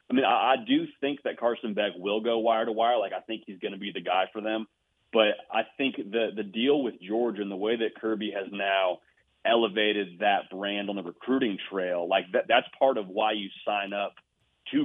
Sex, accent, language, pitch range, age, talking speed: male, American, English, 100-110 Hz, 30-49, 230 wpm